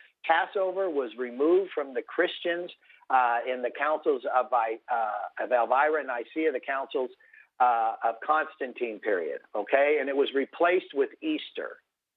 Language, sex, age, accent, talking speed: English, male, 50-69, American, 145 wpm